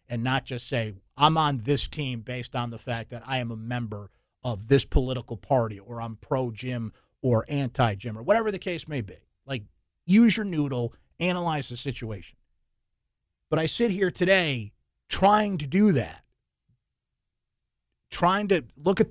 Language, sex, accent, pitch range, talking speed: English, male, American, 115-155 Hz, 165 wpm